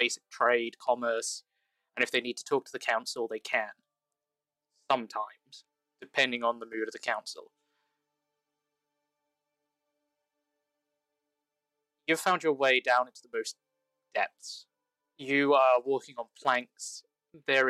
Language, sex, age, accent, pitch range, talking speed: English, male, 20-39, British, 105-150 Hz, 125 wpm